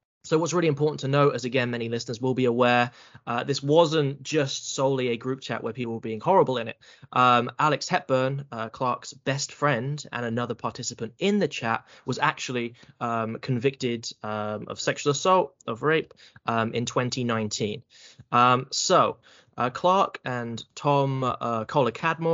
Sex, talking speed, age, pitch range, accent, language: male, 165 wpm, 20-39, 115-140 Hz, British, English